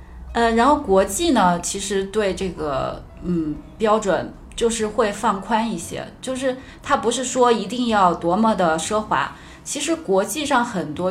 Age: 20-39